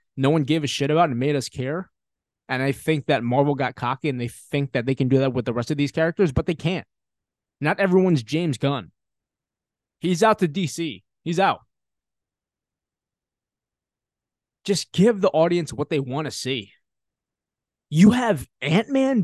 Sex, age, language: male, 20-39, English